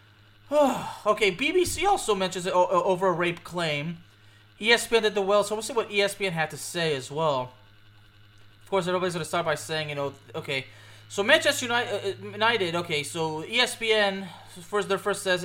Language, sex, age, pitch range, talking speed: English, male, 20-39, 155-205 Hz, 170 wpm